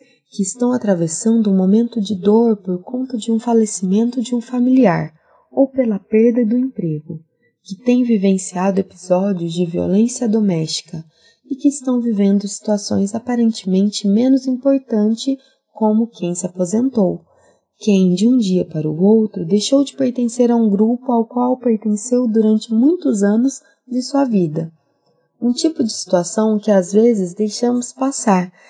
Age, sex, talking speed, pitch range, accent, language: 20-39, female, 145 wpm, 195-255 Hz, Brazilian, Portuguese